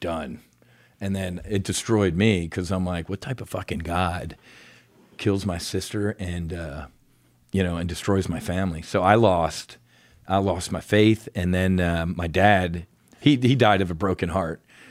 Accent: American